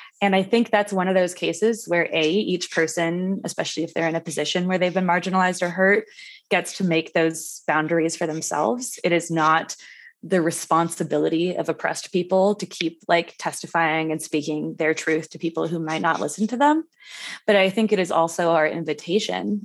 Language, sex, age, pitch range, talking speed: English, female, 20-39, 160-195 Hz, 190 wpm